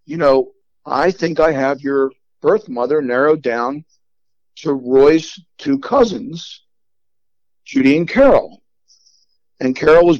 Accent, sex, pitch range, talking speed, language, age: American, male, 130-155 Hz, 125 wpm, English, 50-69